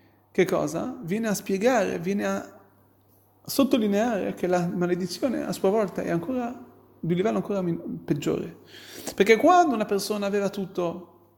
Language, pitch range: Italian, 165-225 Hz